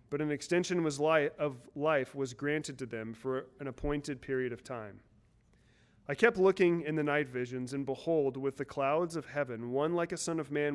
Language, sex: English, male